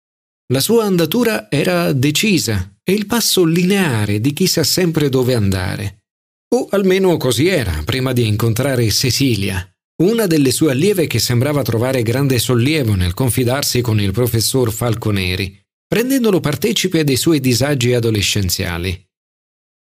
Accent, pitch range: native, 115-180 Hz